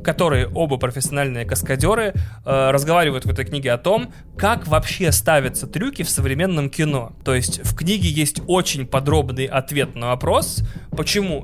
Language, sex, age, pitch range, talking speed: Russian, male, 20-39, 130-160 Hz, 150 wpm